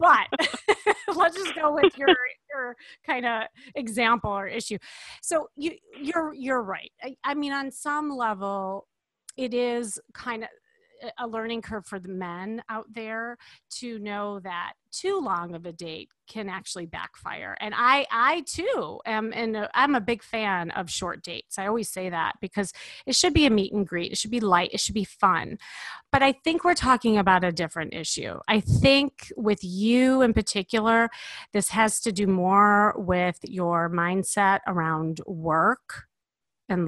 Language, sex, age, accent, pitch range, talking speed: English, female, 30-49, American, 185-250 Hz, 170 wpm